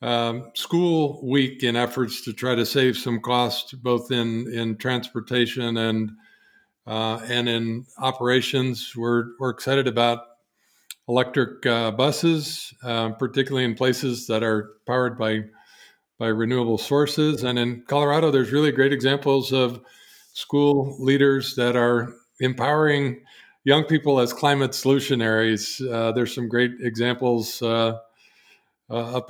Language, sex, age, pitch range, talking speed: English, male, 50-69, 120-140 Hz, 130 wpm